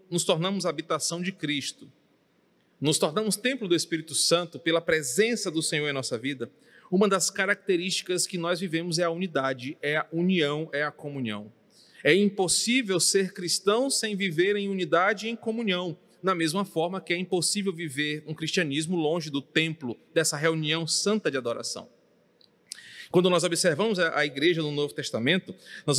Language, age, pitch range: Portuguese, 40-59, 160-215 Hz